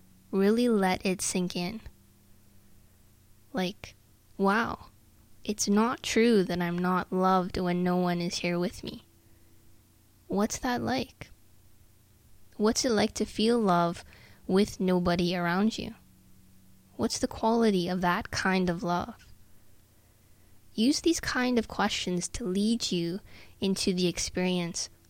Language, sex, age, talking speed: English, female, 20-39, 125 wpm